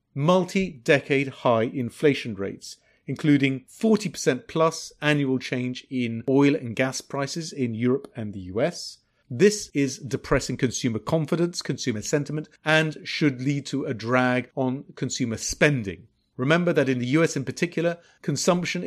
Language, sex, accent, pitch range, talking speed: English, male, British, 125-155 Hz, 135 wpm